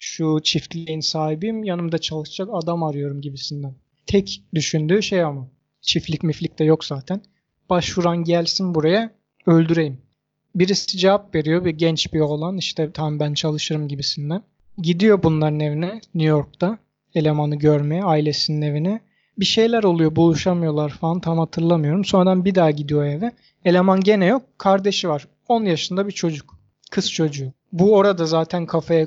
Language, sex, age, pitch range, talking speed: Turkish, male, 30-49, 155-185 Hz, 140 wpm